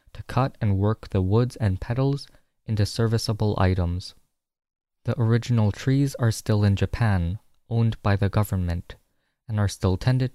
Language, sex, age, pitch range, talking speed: English, male, 20-39, 95-120 Hz, 150 wpm